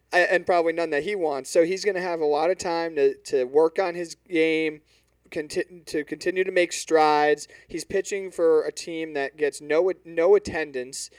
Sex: male